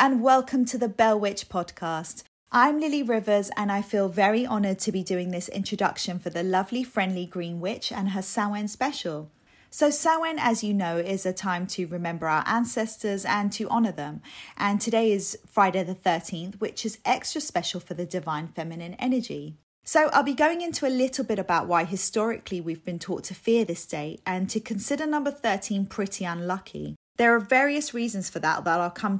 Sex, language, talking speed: female, English, 195 wpm